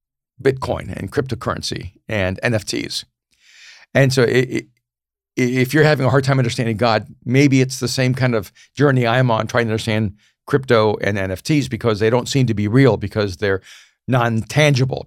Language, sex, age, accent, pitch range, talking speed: English, male, 50-69, American, 110-135 Hz, 160 wpm